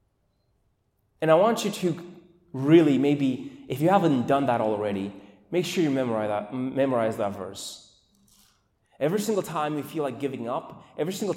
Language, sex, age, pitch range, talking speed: English, male, 20-39, 115-185 Hz, 160 wpm